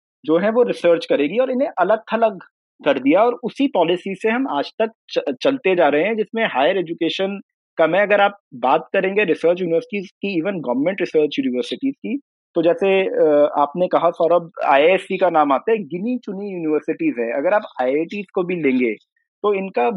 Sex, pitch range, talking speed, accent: male, 165-220 Hz, 185 wpm, native